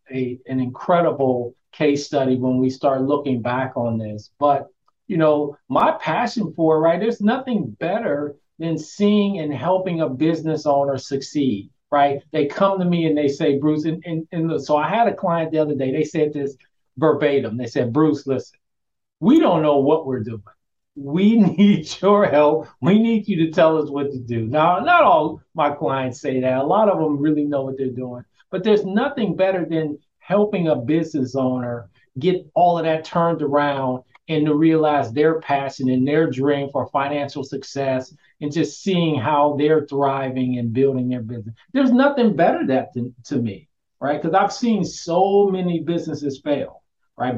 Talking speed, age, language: 185 wpm, 50-69, English